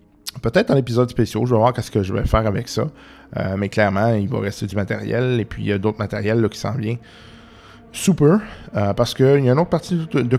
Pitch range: 100-120 Hz